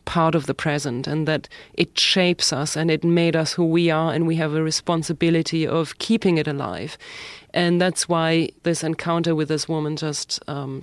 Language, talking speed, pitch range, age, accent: English, 200 wpm, 155-180 Hz, 30-49, German